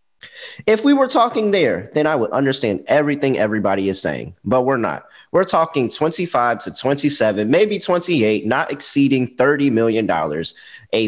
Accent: American